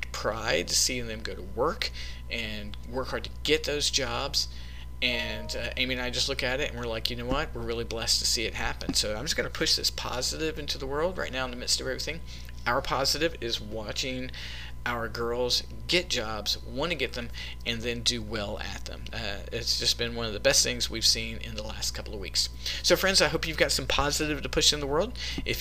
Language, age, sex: English, 40-59, male